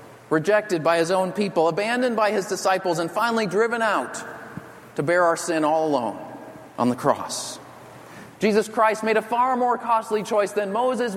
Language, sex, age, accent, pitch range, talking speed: English, male, 40-59, American, 165-225 Hz, 170 wpm